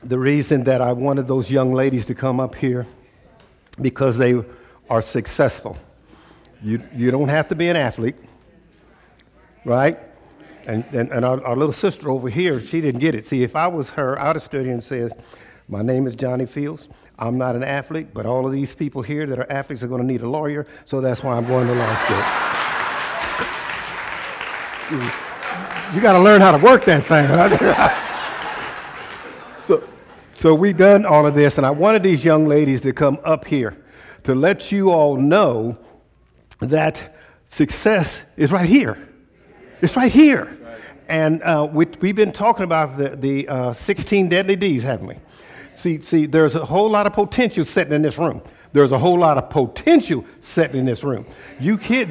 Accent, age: American, 60-79